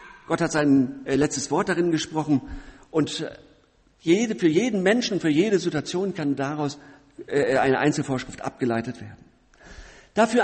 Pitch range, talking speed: 145-215 Hz, 145 wpm